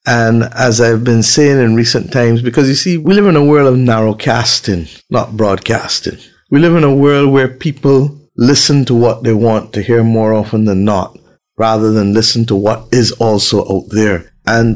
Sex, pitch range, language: male, 115-170 Hz, English